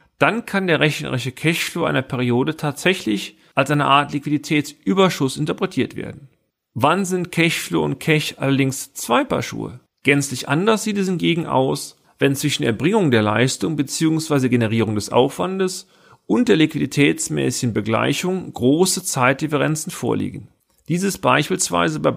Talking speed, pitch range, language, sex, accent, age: 135 wpm, 125-165 Hz, German, male, German, 40-59